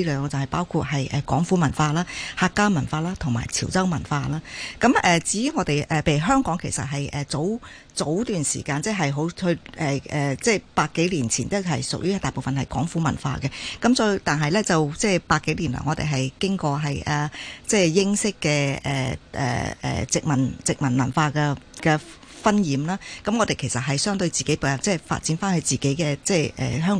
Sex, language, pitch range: female, Chinese, 140-185 Hz